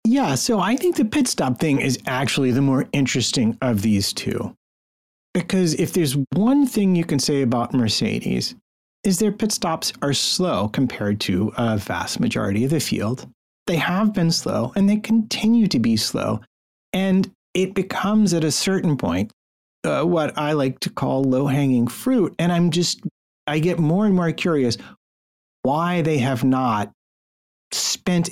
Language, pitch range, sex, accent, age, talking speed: English, 125-175 Hz, male, American, 40-59, 165 wpm